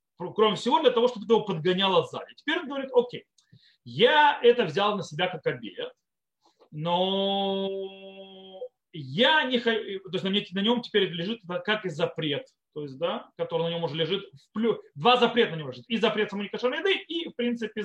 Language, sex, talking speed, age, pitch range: Russian, male, 180 wpm, 30-49, 180-265 Hz